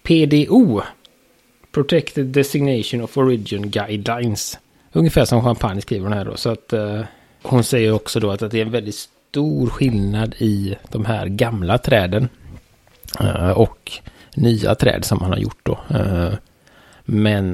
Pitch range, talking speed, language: 100-120 Hz, 125 wpm, Swedish